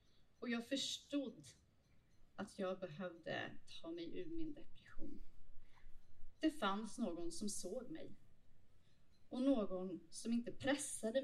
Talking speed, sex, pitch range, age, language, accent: 115 wpm, female, 180-250 Hz, 30-49, Swedish, native